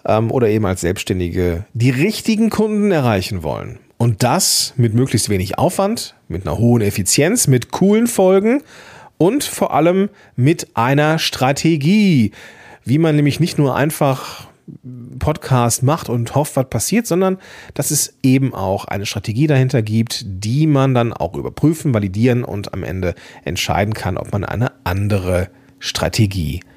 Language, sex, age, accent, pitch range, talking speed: German, male, 40-59, German, 115-160 Hz, 145 wpm